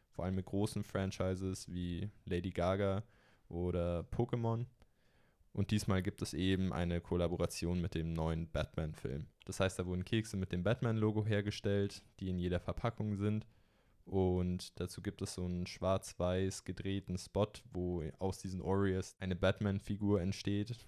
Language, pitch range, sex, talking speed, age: German, 90-105 Hz, male, 145 wpm, 20-39